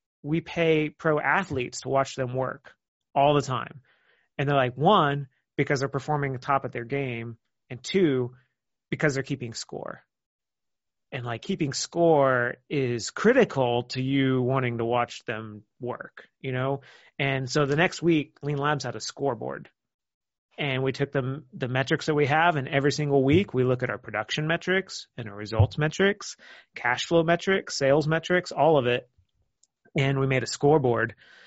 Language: English